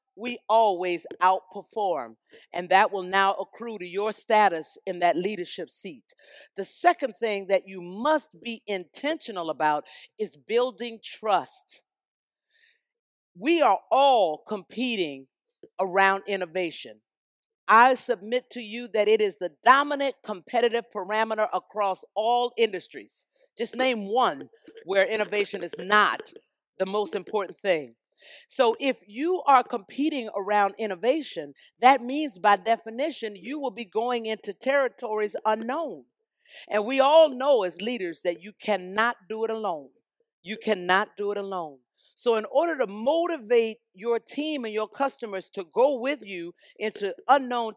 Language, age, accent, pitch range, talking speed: English, 50-69, American, 195-260 Hz, 135 wpm